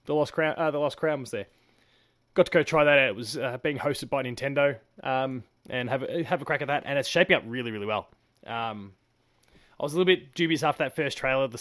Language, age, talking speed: English, 20-39, 260 wpm